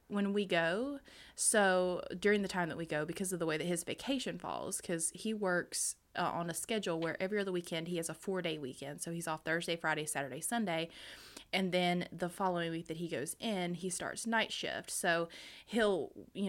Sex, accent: female, American